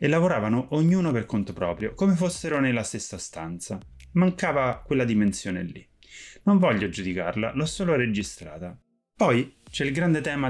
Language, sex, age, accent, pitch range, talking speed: Italian, male, 30-49, native, 95-130 Hz, 150 wpm